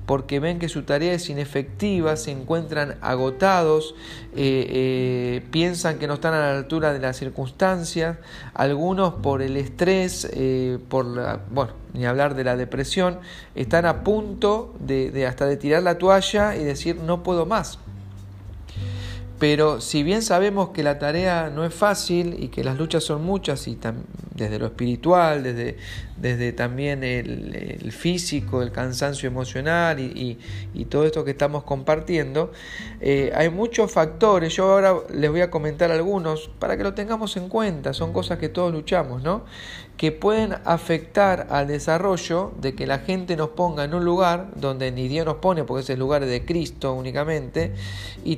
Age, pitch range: 40-59, 130-175 Hz